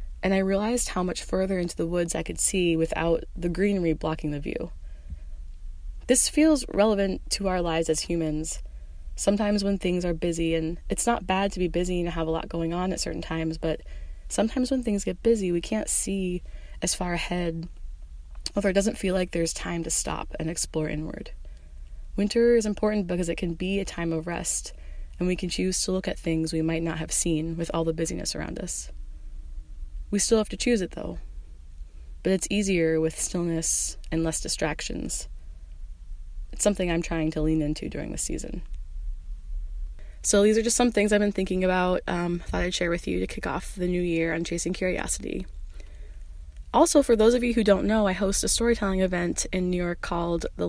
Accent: American